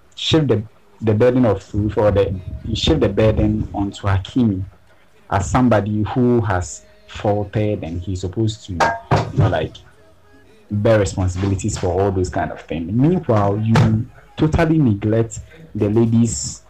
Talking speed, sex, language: 145 wpm, male, English